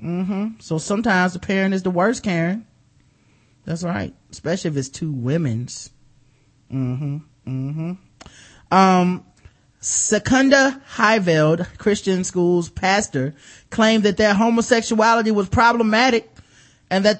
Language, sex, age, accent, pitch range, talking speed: English, male, 30-49, American, 155-205 Hz, 110 wpm